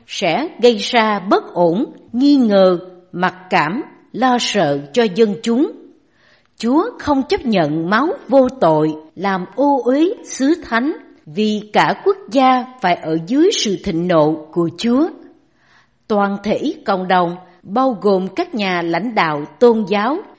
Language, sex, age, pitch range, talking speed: Vietnamese, female, 60-79, 185-270 Hz, 145 wpm